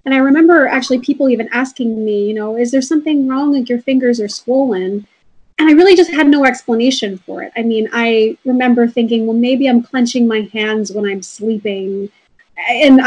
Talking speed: 200 wpm